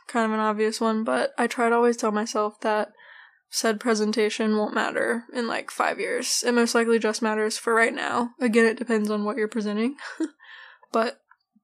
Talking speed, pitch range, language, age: 190 wpm, 220-245 Hz, English, 10-29